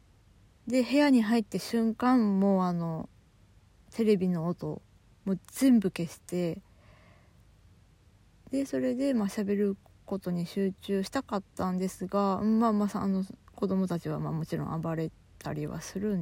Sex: female